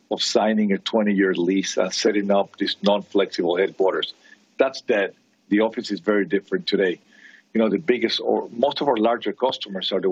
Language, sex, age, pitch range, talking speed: English, male, 50-69, 95-110 Hz, 190 wpm